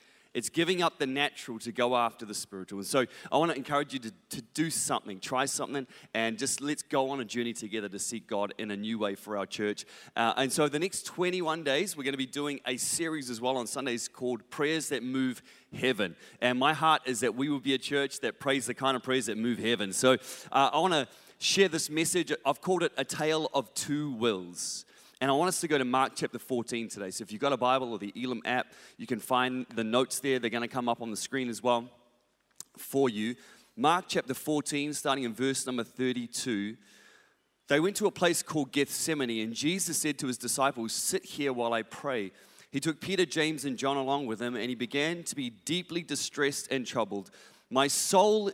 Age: 30-49